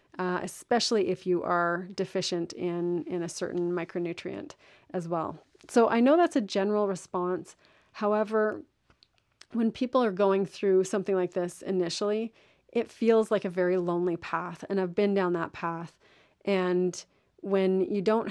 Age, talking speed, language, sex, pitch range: 30-49, 155 wpm, English, female, 180-195 Hz